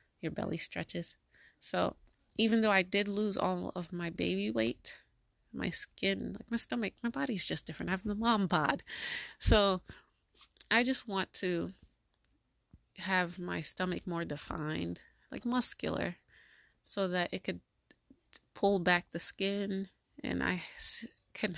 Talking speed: 140 wpm